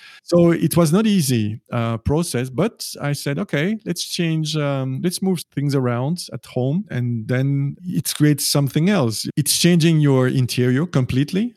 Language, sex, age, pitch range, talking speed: English, male, 50-69, 130-170 Hz, 160 wpm